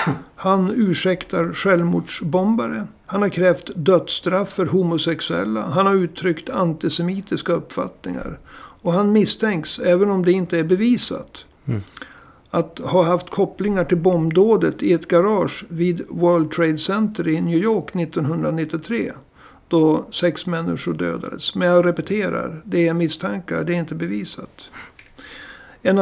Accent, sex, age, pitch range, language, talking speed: native, male, 60-79, 165-190 Hz, Swedish, 125 wpm